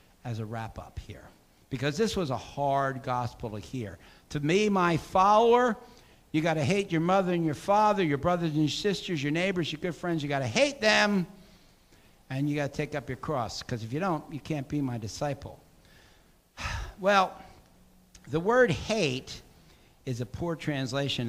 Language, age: English, 60-79